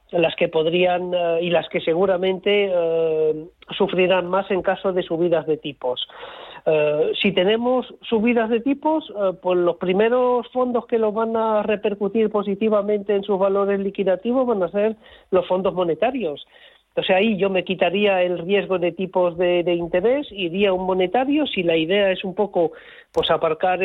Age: 40-59